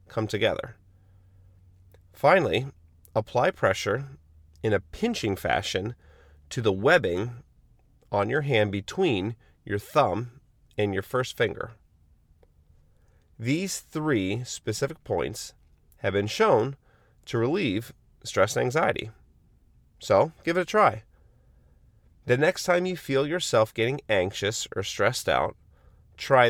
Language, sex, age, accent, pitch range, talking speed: English, male, 30-49, American, 95-125 Hz, 115 wpm